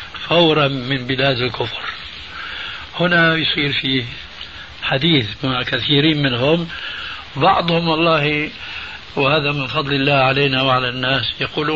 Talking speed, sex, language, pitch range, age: 105 wpm, male, Arabic, 135-160 Hz, 70-89